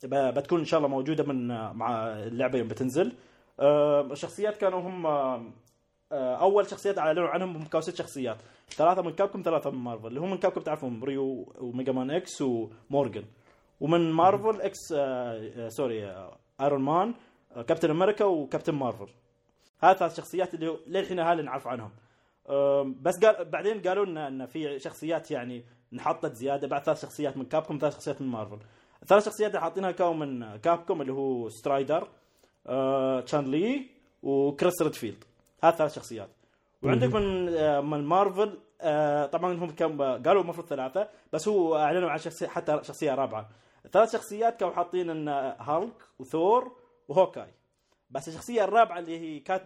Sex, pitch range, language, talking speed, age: male, 130-180 Hz, Arabic, 150 wpm, 20-39